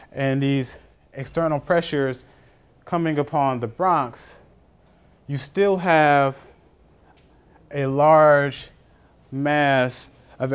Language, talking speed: English, 85 wpm